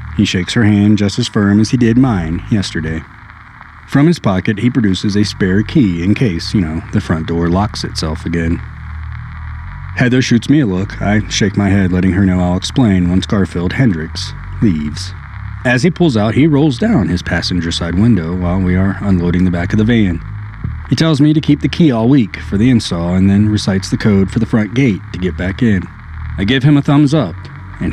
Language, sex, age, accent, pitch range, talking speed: English, male, 30-49, American, 90-120 Hz, 215 wpm